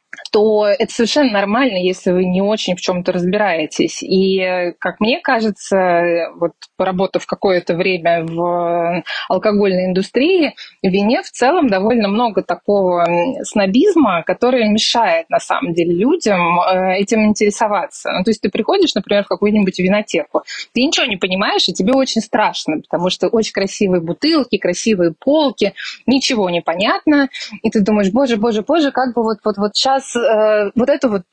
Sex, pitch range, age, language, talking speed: female, 180-225 Hz, 20-39, Russian, 155 wpm